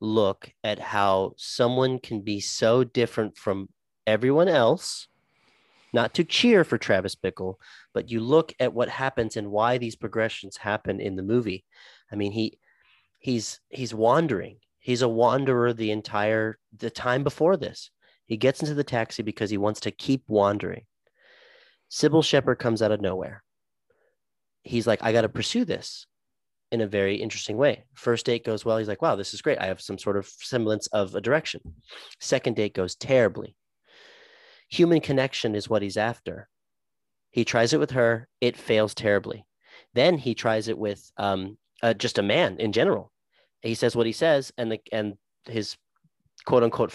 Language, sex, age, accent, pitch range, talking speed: English, male, 30-49, American, 105-130 Hz, 170 wpm